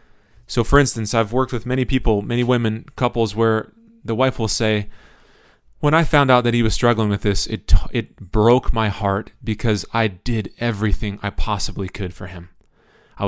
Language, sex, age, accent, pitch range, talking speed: English, male, 20-39, American, 105-120 Hz, 185 wpm